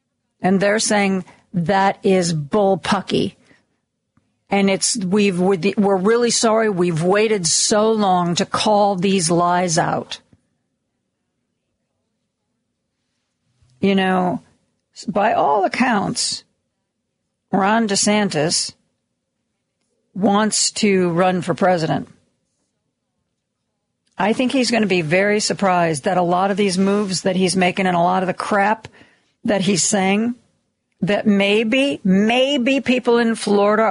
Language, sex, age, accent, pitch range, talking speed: English, female, 50-69, American, 190-225 Hz, 115 wpm